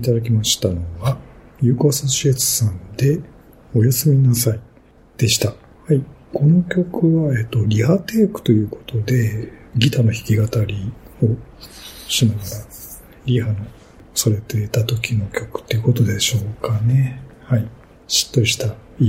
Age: 50-69